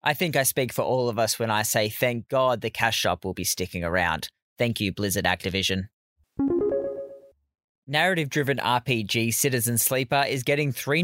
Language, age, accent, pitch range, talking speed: English, 20-39, Australian, 105-135 Hz, 170 wpm